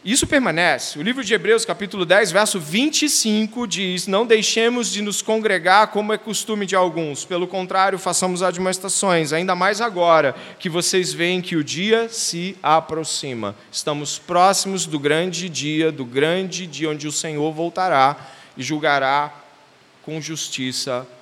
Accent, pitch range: Brazilian, 140-190 Hz